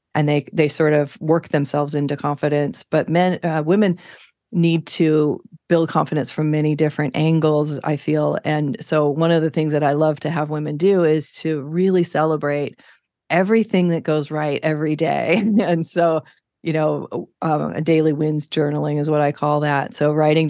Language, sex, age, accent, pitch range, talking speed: English, female, 40-59, American, 150-160 Hz, 180 wpm